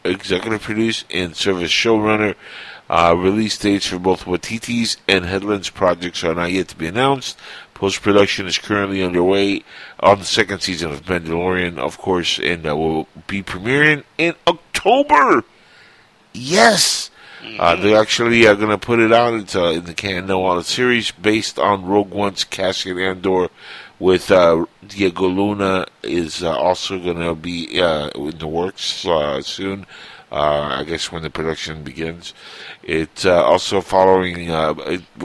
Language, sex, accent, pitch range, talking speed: English, male, American, 85-105 Hz, 155 wpm